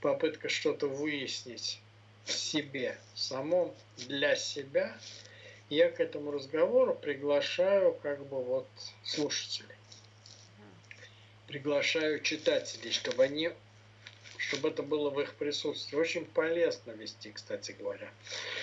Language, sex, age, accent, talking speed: Russian, male, 60-79, native, 100 wpm